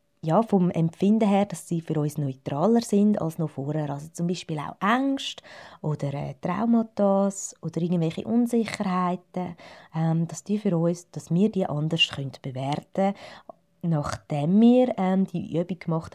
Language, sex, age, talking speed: German, female, 20-39, 155 wpm